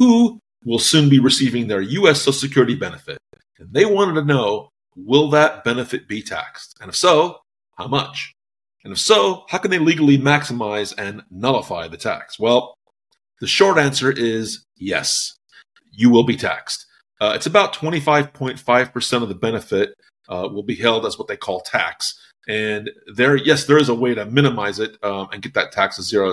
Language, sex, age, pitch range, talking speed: English, male, 30-49, 115-145 Hz, 180 wpm